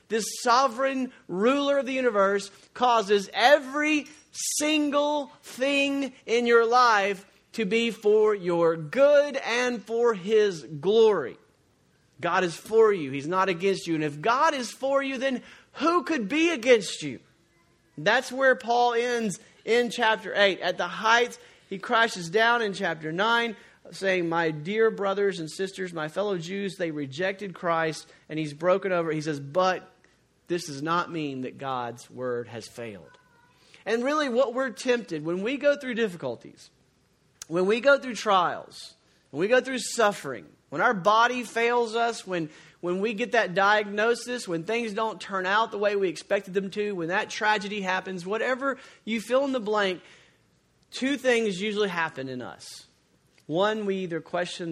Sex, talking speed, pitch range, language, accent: male, 160 wpm, 170-240 Hz, English, American